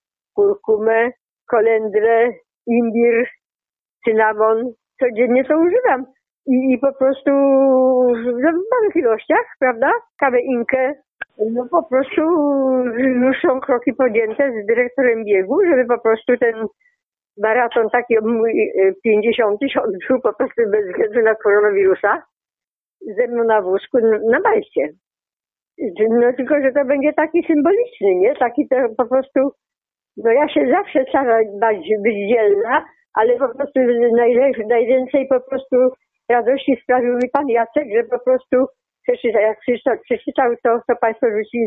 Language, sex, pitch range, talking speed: Polish, female, 235-280 Hz, 130 wpm